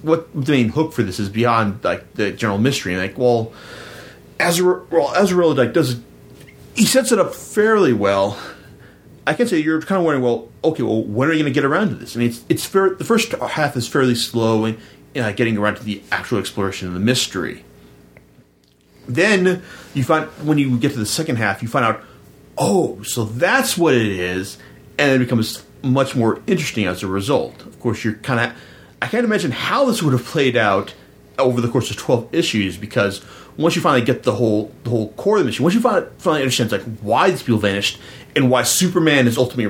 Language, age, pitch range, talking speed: English, 30-49, 105-145 Hz, 215 wpm